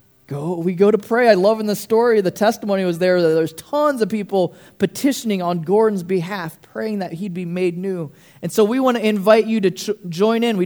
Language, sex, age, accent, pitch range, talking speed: English, male, 20-39, American, 165-210 Hz, 225 wpm